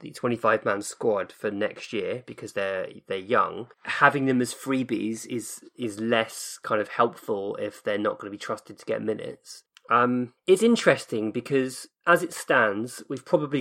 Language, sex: English, male